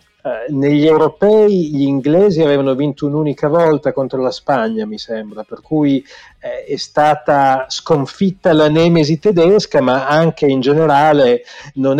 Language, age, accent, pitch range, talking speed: Italian, 40-59, native, 130-170 Hz, 135 wpm